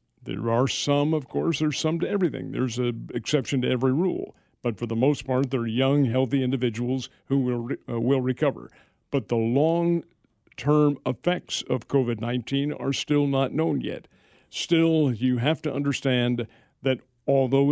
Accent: American